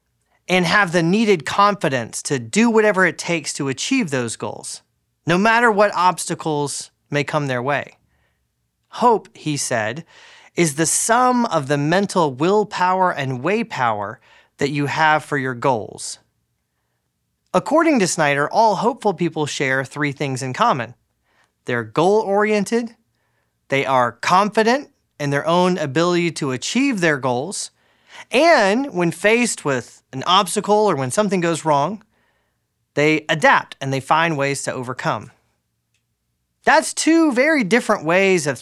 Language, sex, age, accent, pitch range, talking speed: English, male, 30-49, American, 135-205 Hz, 140 wpm